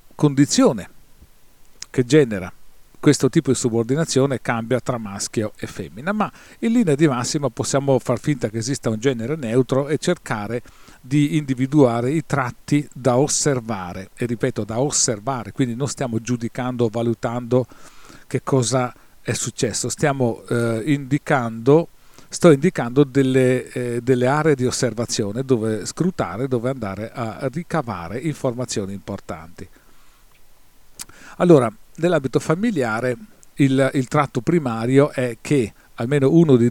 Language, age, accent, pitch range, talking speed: Italian, 40-59, native, 115-150 Hz, 125 wpm